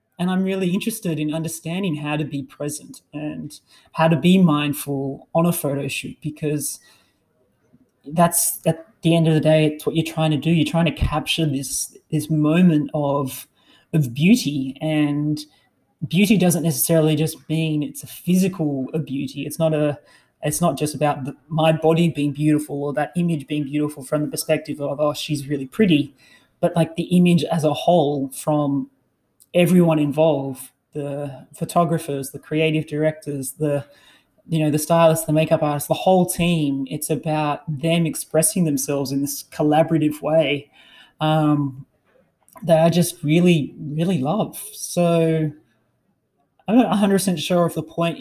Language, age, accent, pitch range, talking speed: English, 20-39, Australian, 145-165 Hz, 160 wpm